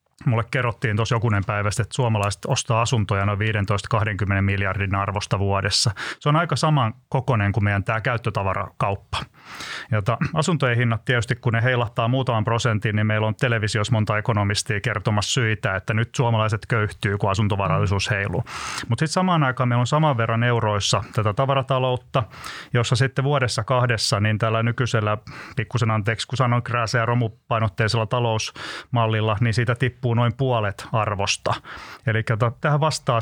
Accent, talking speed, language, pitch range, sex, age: native, 145 wpm, Finnish, 110-125 Hz, male, 30-49